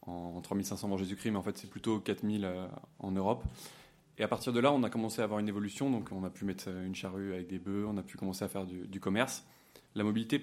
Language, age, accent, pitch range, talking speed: French, 20-39, French, 100-115 Hz, 260 wpm